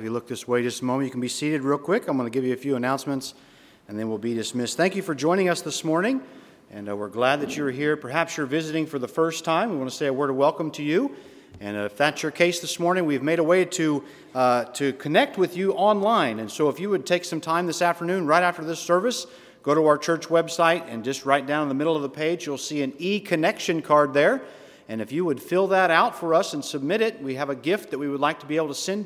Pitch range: 135-175 Hz